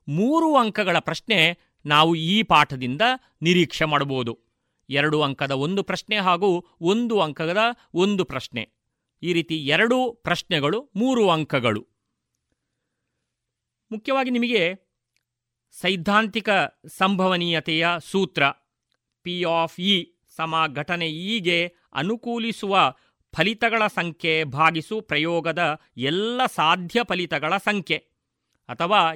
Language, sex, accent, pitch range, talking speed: Kannada, male, native, 150-200 Hz, 90 wpm